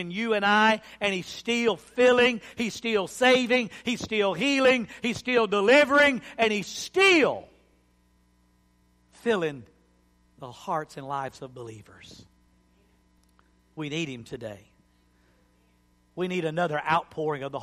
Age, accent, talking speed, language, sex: 50-69, American, 125 wpm, English, male